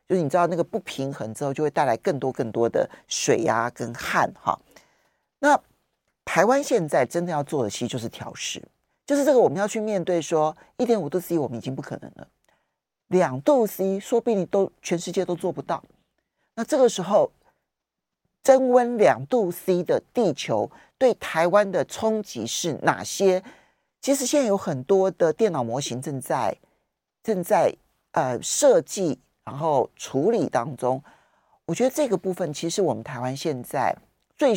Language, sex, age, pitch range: Chinese, male, 40-59, 150-215 Hz